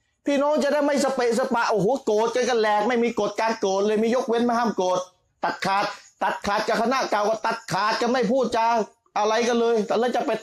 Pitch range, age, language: 120-205 Hz, 30-49, Thai